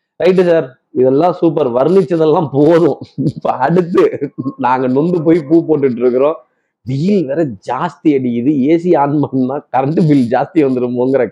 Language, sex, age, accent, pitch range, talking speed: Tamil, male, 30-49, native, 125-165 Hz, 135 wpm